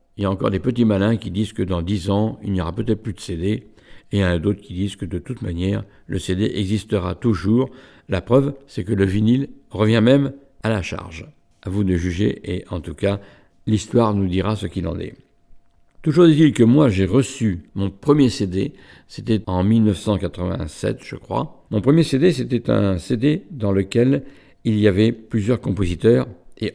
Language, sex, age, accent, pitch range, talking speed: French, male, 60-79, French, 95-125 Hz, 200 wpm